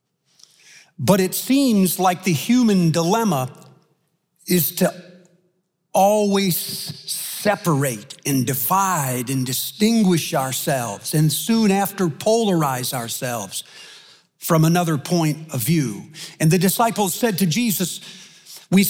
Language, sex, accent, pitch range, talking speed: English, male, American, 160-205 Hz, 105 wpm